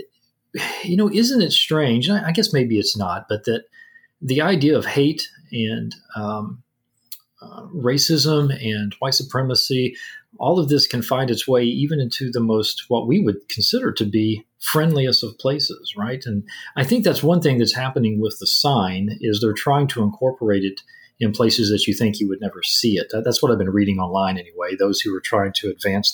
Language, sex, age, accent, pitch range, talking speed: English, male, 40-59, American, 105-135 Hz, 195 wpm